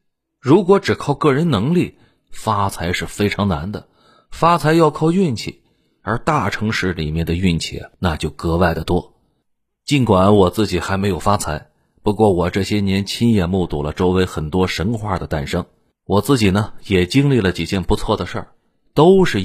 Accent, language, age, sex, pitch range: native, Chinese, 30-49, male, 85-115 Hz